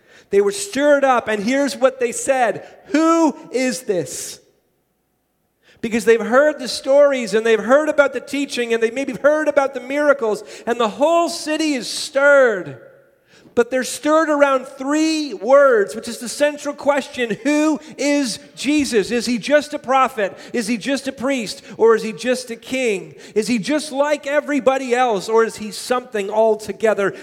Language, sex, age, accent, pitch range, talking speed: English, male, 40-59, American, 215-275 Hz, 170 wpm